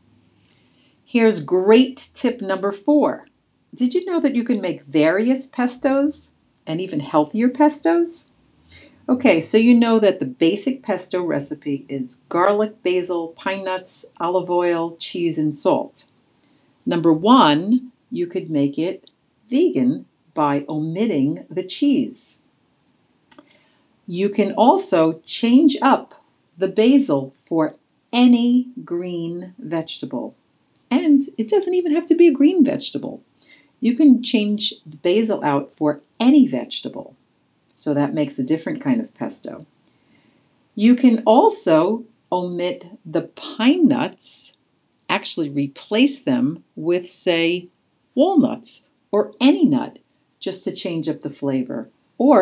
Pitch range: 170-270 Hz